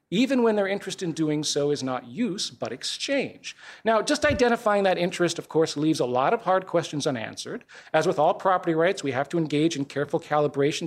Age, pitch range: 40-59, 150-190 Hz